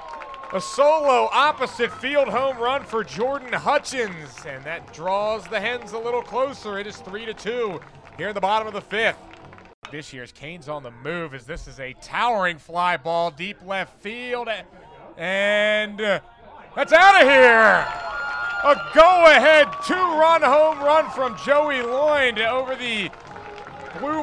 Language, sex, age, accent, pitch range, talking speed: English, male, 30-49, American, 195-265 Hz, 150 wpm